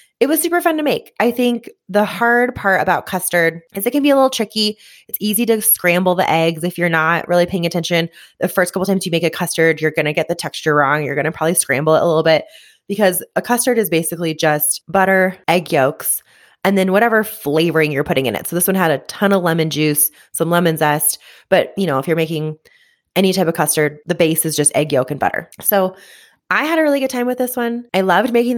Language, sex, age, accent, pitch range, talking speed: English, female, 20-39, American, 160-205 Hz, 245 wpm